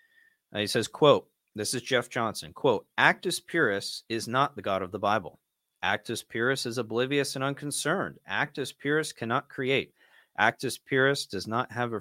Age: 40-59